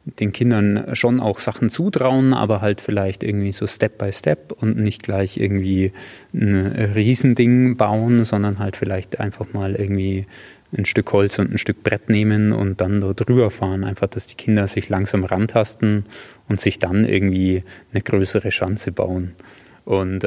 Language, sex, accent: German, male, German